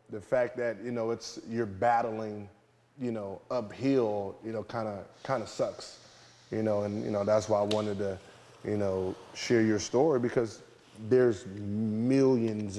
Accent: American